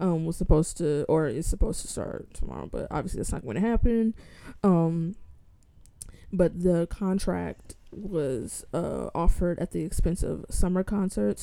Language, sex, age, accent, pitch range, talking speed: English, female, 20-39, American, 150-185 Hz, 155 wpm